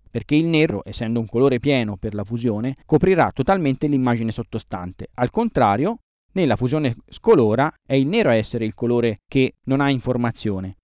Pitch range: 110-155 Hz